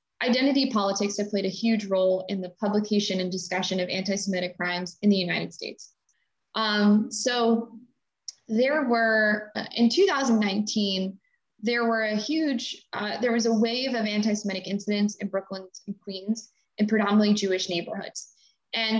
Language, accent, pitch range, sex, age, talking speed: English, American, 195-225 Hz, female, 20-39, 135 wpm